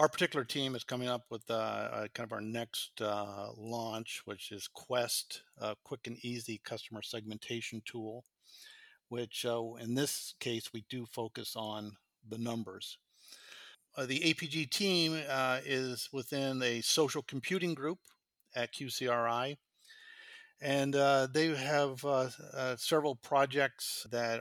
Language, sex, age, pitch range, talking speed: English, male, 50-69, 110-135 Hz, 140 wpm